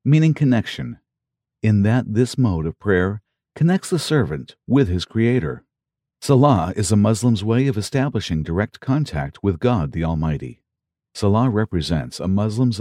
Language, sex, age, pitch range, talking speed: English, male, 50-69, 90-125 Hz, 145 wpm